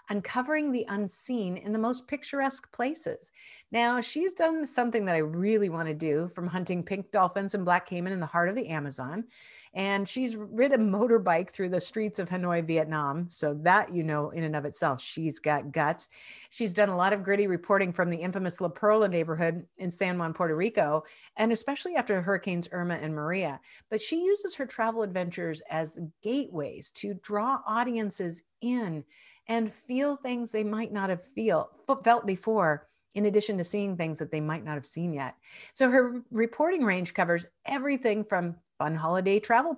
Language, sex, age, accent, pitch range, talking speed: English, female, 50-69, American, 175-235 Hz, 185 wpm